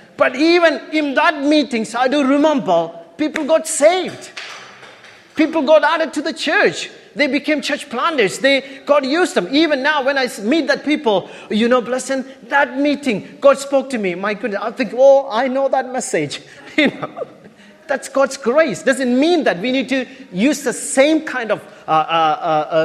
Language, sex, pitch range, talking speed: English, male, 170-275 Hz, 185 wpm